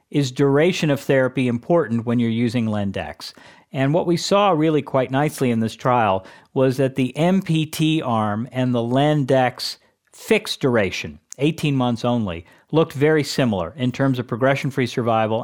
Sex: male